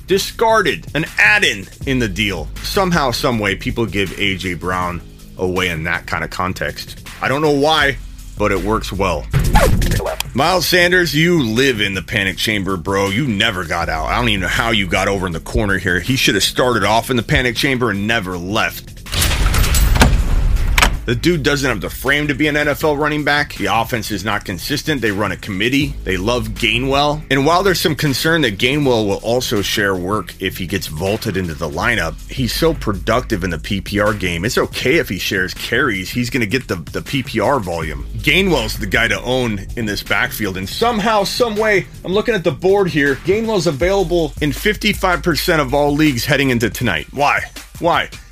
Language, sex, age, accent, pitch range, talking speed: English, male, 30-49, American, 100-150 Hz, 195 wpm